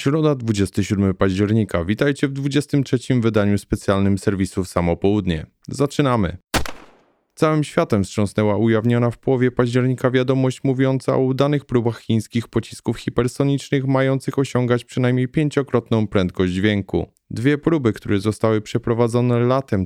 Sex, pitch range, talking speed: male, 110-135 Hz, 120 wpm